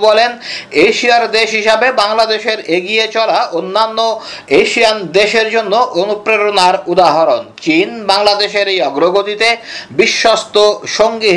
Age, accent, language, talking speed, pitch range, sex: 50-69, native, Bengali, 100 wpm, 205-235 Hz, male